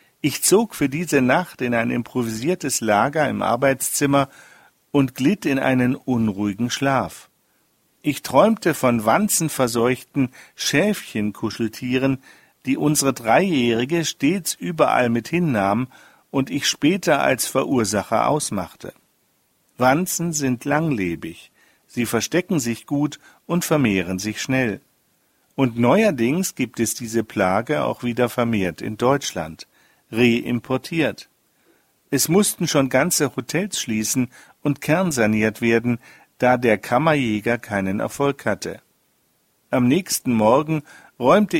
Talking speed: 110 wpm